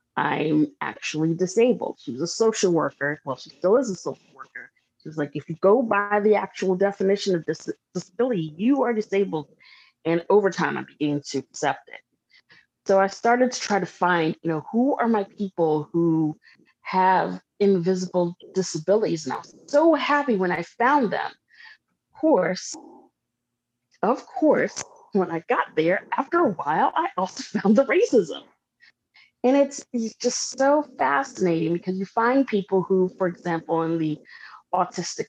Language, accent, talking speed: English, American, 160 wpm